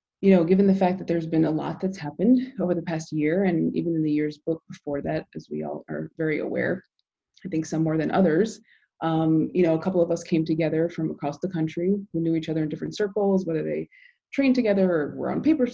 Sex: female